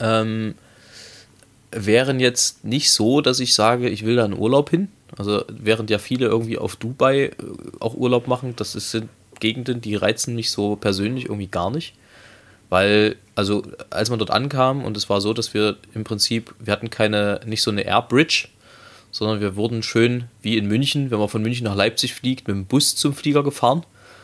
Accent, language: German, German